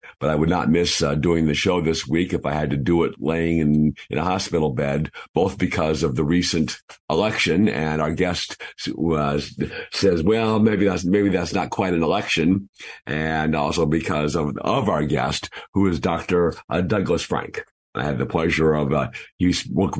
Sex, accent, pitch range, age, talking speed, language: male, American, 75-95 Hz, 50-69, 190 wpm, English